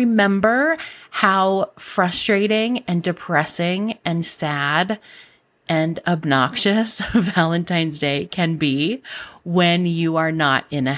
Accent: American